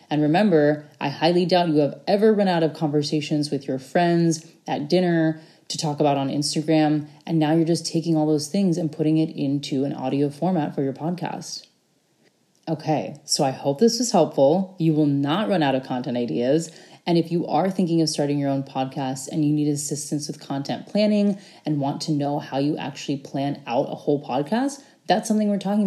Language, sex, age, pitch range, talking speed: English, female, 20-39, 145-175 Hz, 205 wpm